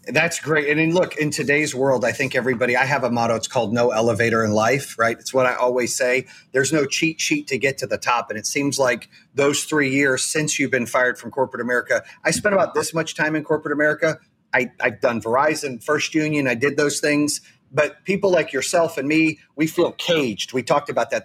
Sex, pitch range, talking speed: male, 130-155 Hz, 235 wpm